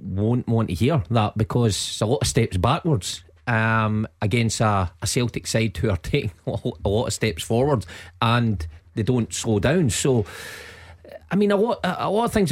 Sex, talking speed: male, 185 wpm